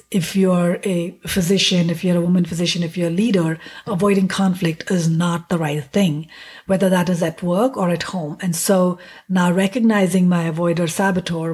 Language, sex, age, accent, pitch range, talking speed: English, female, 50-69, Indian, 170-200 Hz, 180 wpm